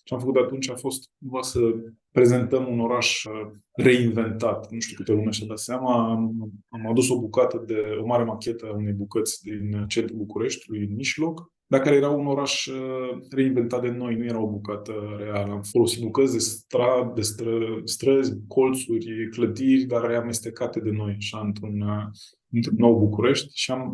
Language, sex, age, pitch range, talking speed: Romanian, male, 20-39, 110-125 Hz, 170 wpm